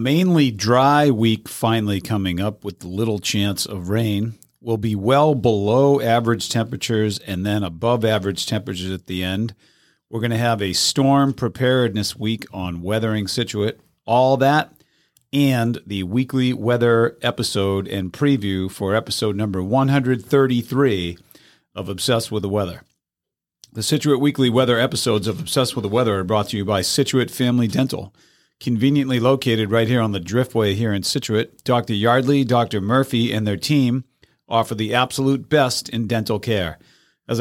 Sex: male